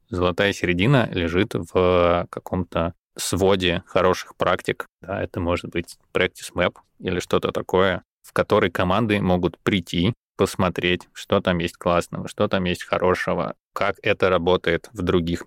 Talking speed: 135 wpm